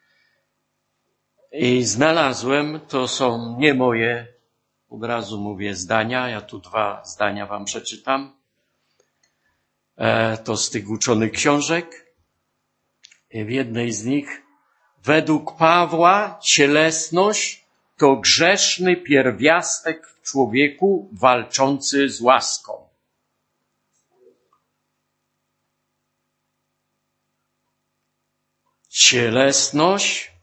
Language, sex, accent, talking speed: Polish, male, native, 75 wpm